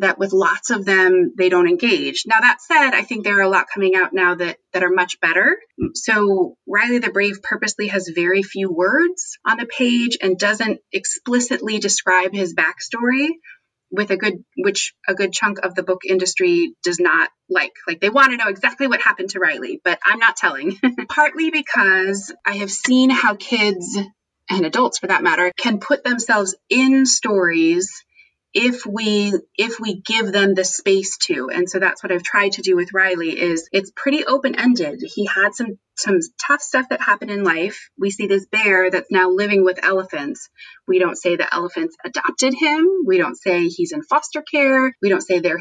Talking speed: 195 wpm